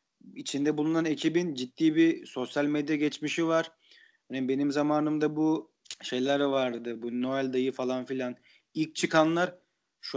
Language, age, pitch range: Turkish, 40-59, 140-175 Hz